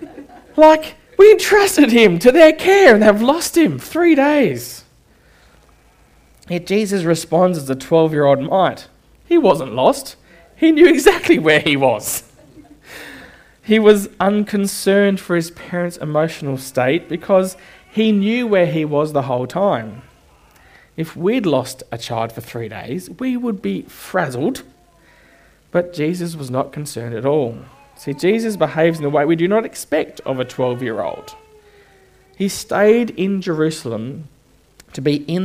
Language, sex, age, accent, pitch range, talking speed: English, male, 20-39, Australian, 140-215 Hz, 145 wpm